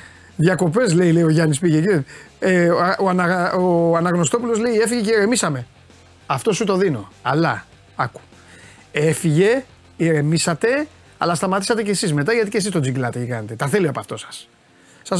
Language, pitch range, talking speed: Greek, 140-200 Hz, 160 wpm